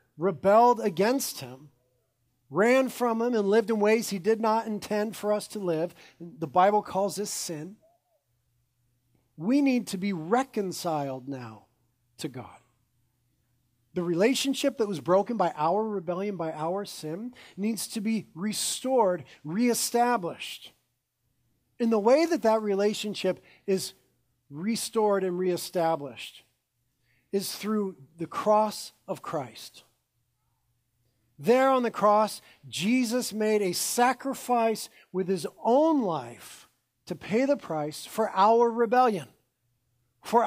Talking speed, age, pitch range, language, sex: 125 wpm, 40-59, 140-220 Hz, English, male